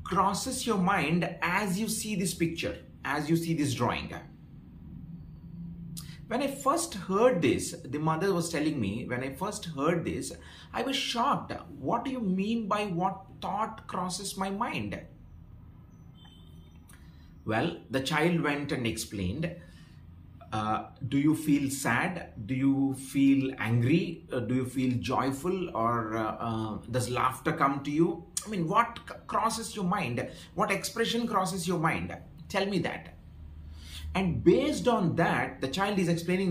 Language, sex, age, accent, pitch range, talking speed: English, male, 30-49, Indian, 135-185 Hz, 150 wpm